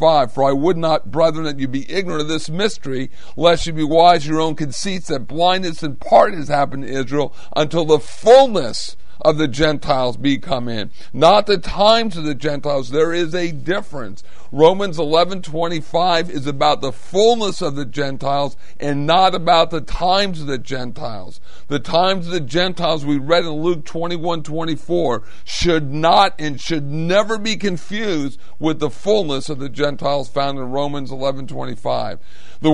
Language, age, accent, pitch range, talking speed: English, 50-69, American, 140-175 Hz, 170 wpm